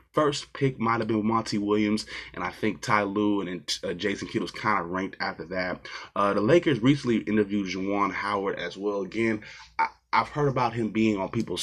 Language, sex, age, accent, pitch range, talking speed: English, male, 20-39, American, 95-115 Hz, 200 wpm